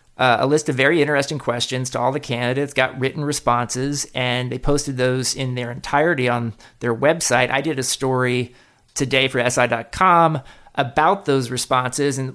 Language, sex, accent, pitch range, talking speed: English, male, American, 120-140 Hz, 170 wpm